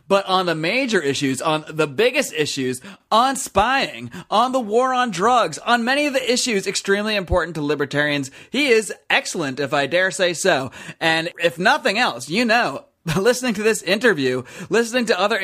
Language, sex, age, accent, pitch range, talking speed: English, male, 30-49, American, 155-225 Hz, 180 wpm